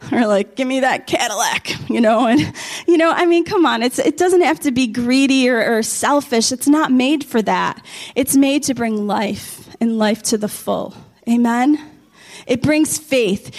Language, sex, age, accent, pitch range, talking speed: English, female, 30-49, American, 215-290 Hz, 195 wpm